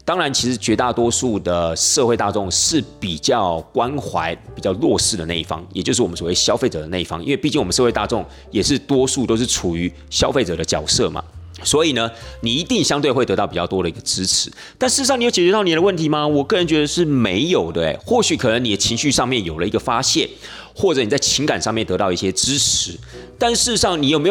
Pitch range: 90-140 Hz